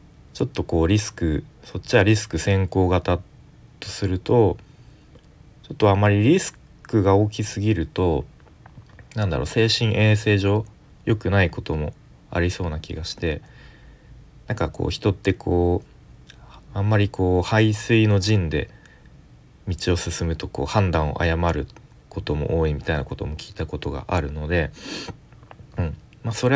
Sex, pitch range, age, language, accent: male, 80-110 Hz, 40-59, Japanese, native